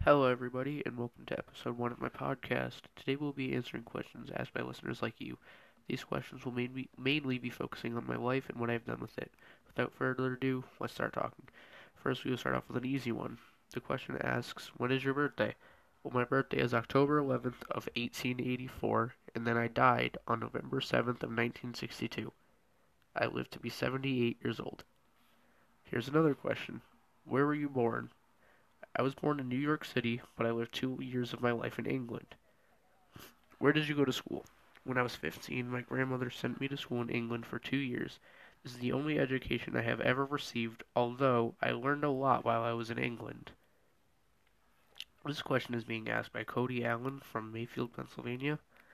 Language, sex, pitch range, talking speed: Amharic, male, 120-135 Hz, 190 wpm